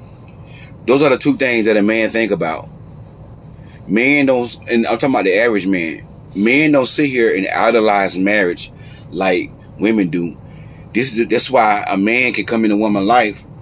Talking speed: 180 wpm